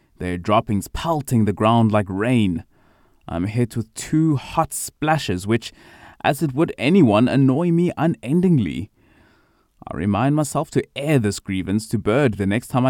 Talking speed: 155 wpm